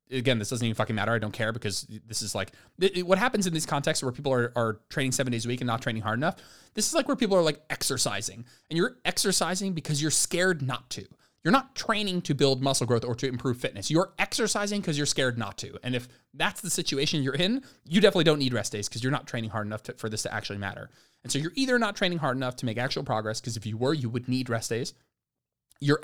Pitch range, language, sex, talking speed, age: 115-150 Hz, English, male, 260 wpm, 20-39